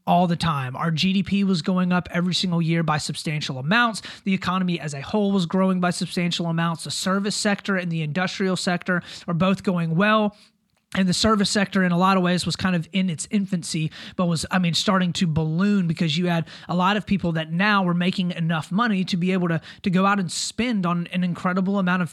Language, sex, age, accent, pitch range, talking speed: English, male, 30-49, American, 165-195 Hz, 230 wpm